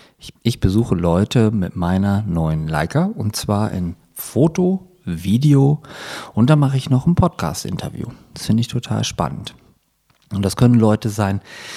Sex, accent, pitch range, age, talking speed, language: male, German, 95-135 Hz, 40-59, 155 wpm, German